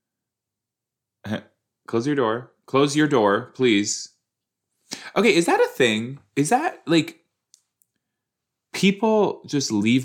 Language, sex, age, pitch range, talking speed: English, male, 20-39, 95-150 Hz, 110 wpm